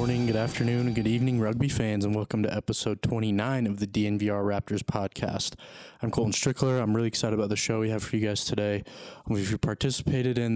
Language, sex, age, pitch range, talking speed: English, male, 20-39, 105-115 Hz, 210 wpm